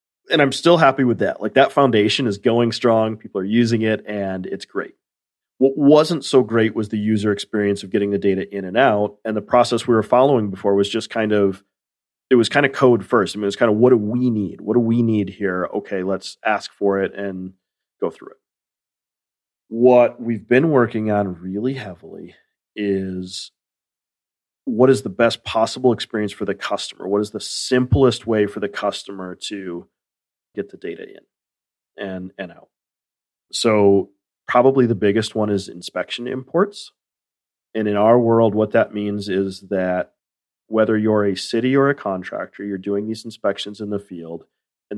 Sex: male